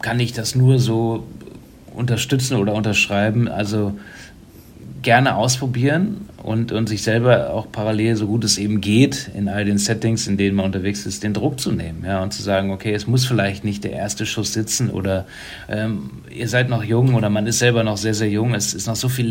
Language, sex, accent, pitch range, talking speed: German, male, German, 100-115 Hz, 210 wpm